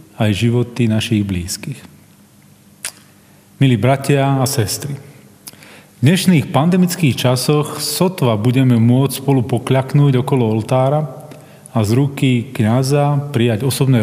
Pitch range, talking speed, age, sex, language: 115-150 Hz, 105 wpm, 40-59, male, Slovak